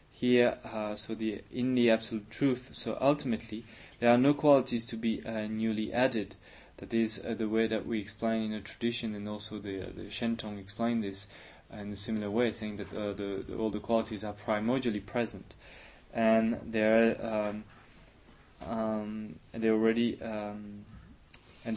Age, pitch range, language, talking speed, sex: 20-39, 100-115 Hz, English, 170 wpm, male